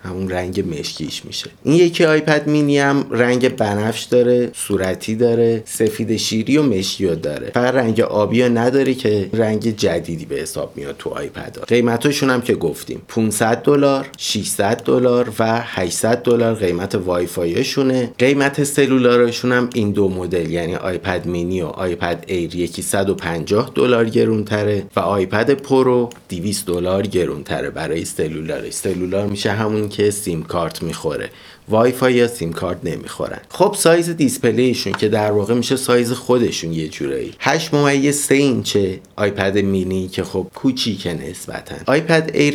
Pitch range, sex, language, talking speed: 95-125 Hz, male, Persian, 150 wpm